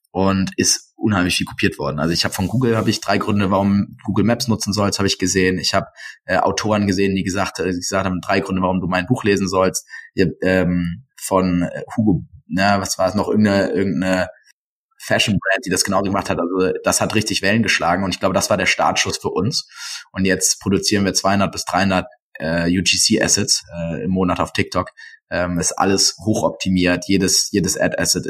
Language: German